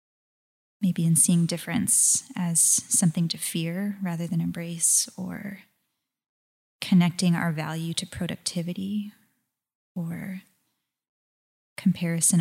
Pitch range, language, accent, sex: 170-195 Hz, English, American, female